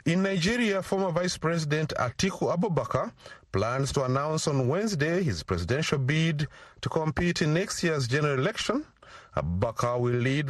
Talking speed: 145 wpm